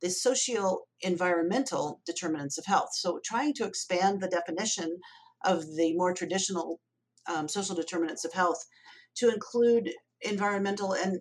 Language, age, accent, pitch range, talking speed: English, 50-69, American, 165-210 Hz, 135 wpm